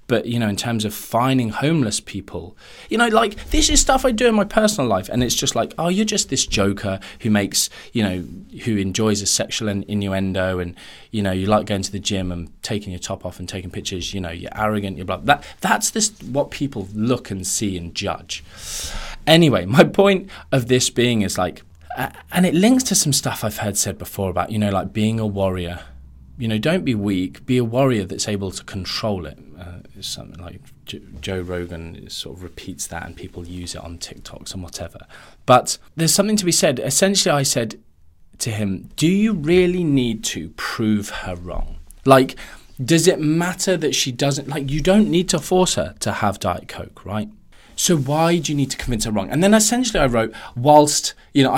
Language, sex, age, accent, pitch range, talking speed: English, male, 20-39, British, 95-150 Hz, 210 wpm